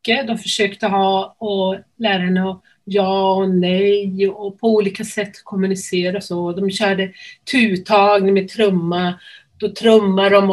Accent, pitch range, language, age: native, 180-215 Hz, Swedish, 40-59